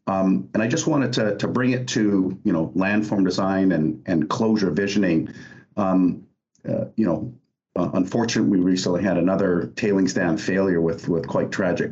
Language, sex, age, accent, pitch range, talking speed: English, male, 50-69, American, 95-110 Hz, 175 wpm